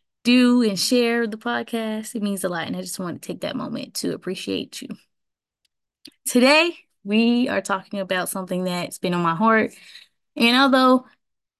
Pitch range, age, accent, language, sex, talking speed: 190-240 Hz, 20-39, American, English, female, 170 wpm